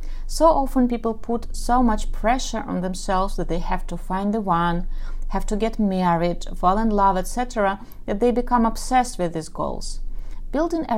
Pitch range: 180-235 Hz